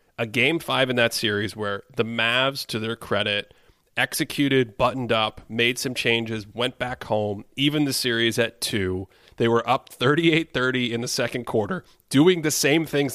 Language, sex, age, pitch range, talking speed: English, male, 30-49, 105-135 Hz, 175 wpm